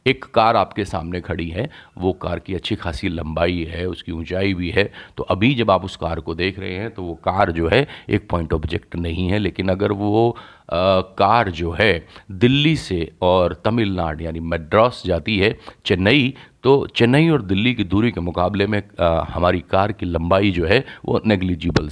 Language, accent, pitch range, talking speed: Hindi, native, 90-120 Hz, 195 wpm